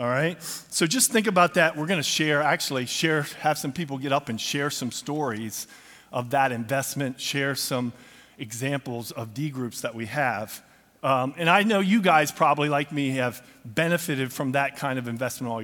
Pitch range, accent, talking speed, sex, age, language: 120-150 Hz, American, 195 wpm, male, 40-59, English